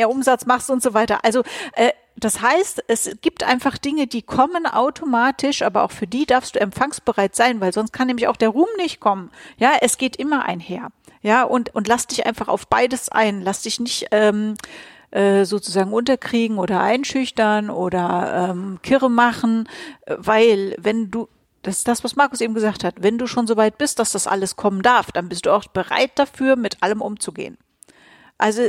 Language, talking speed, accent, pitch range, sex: German, 190 wpm, German, 210-250 Hz, female